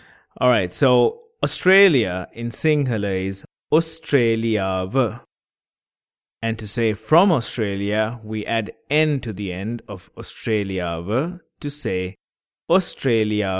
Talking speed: 105 wpm